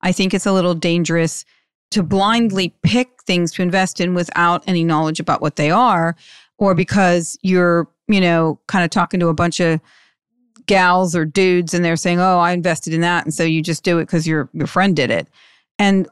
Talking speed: 210 wpm